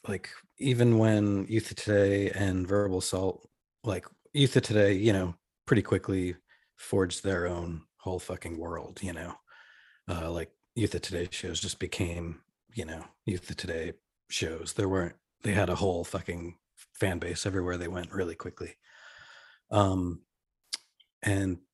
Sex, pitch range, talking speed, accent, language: male, 90-100 Hz, 150 wpm, American, English